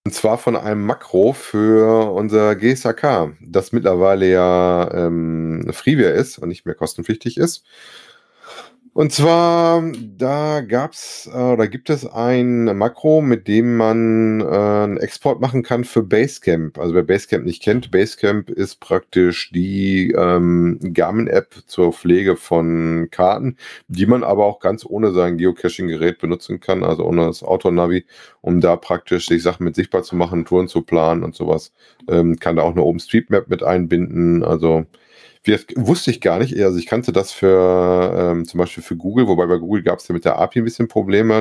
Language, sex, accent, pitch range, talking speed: German, male, German, 90-115 Hz, 170 wpm